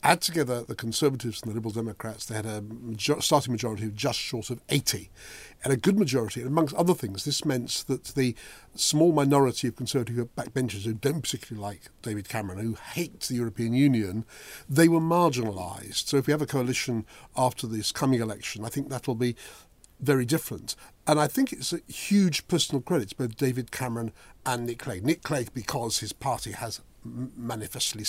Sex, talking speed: male, 190 wpm